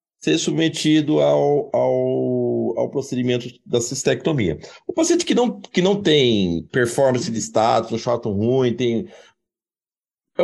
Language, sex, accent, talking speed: Portuguese, male, Brazilian, 115 wpm